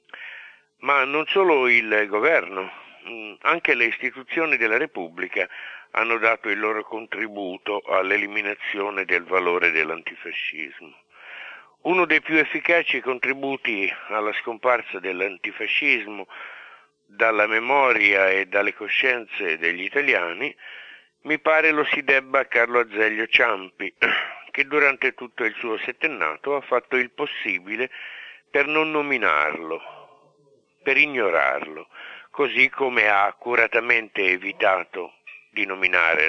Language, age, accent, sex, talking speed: Italian, 50-69, native, male, 105 wpm